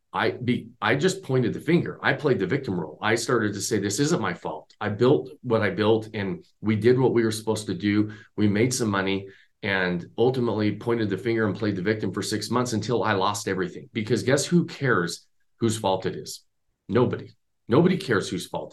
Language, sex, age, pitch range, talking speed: English, male, 40-59, 105-145 Hz, 215 wpm